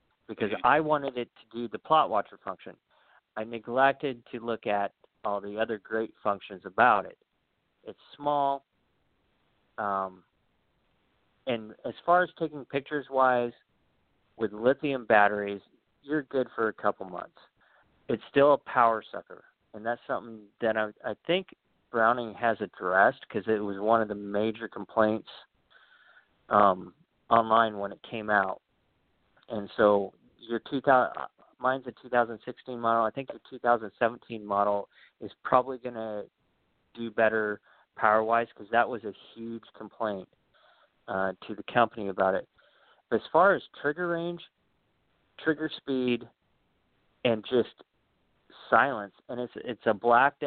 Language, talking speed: English, 140 wpm